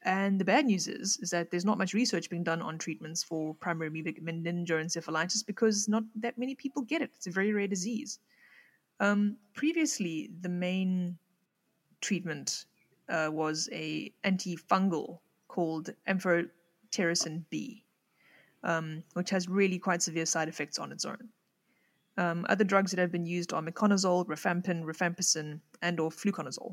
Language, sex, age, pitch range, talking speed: English, female, 30-49, 165-205 Hz, 155 wpm